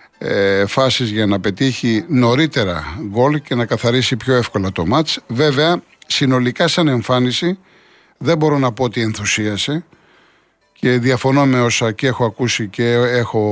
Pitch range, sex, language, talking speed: 115-150 Hz, male, Greek, 140 wpm